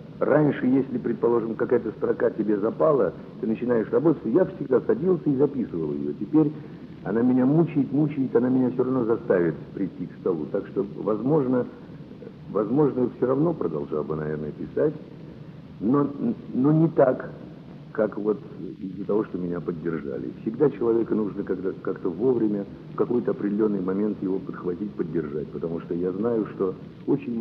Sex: male